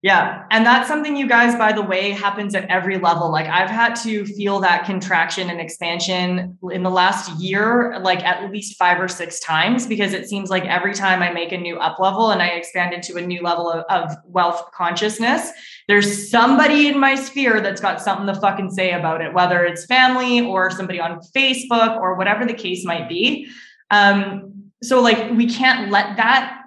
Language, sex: English, female